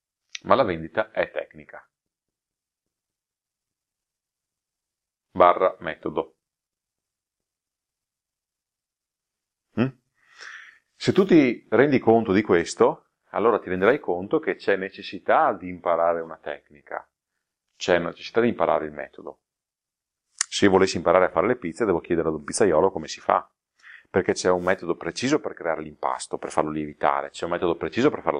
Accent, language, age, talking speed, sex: native, Italian, 40-59, 135 wpm, male